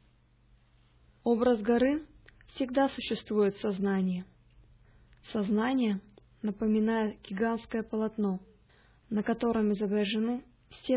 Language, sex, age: Russian, female, 20-39